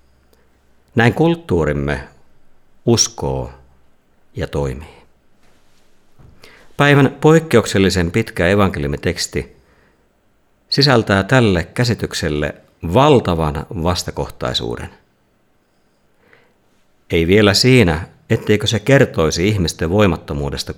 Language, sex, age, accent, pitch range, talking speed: Finnish, male, 50-69, native, 75-115 Hz, 65 wpm